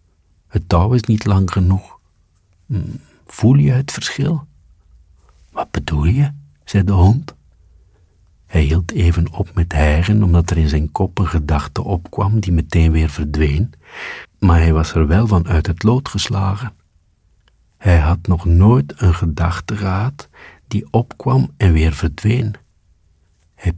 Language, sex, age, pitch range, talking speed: Dutch, male, 50-69, 80-100 Hz, 145 wpm